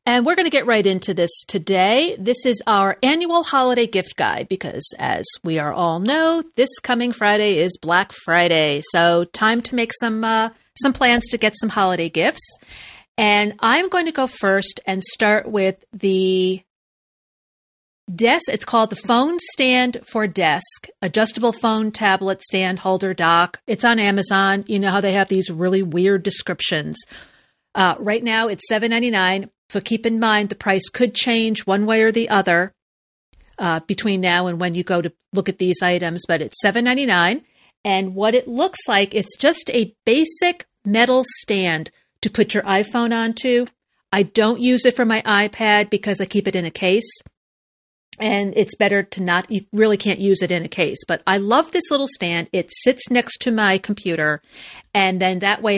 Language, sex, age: English, female, 40-59